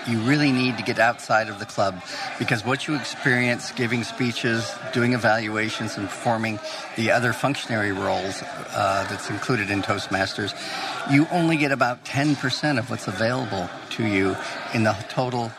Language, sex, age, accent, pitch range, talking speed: English, male, 50-69, American, 110-130 Hz, 160 wpm